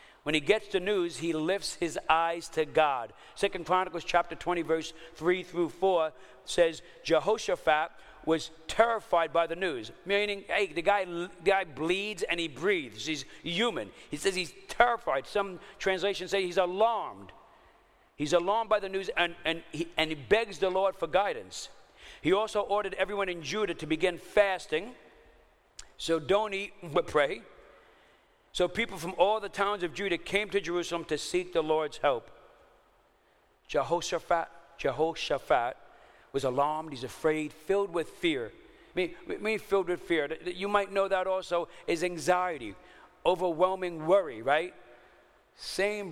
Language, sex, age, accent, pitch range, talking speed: English, male, 50-69, American, 160-195 Hz, 155 wpm